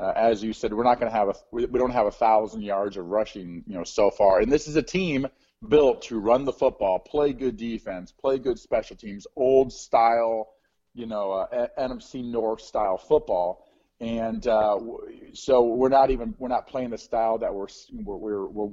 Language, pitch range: English, 110-135 Hz